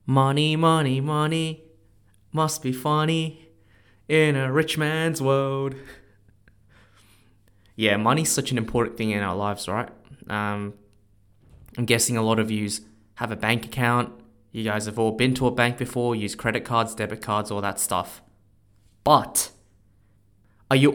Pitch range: 105-135 Hz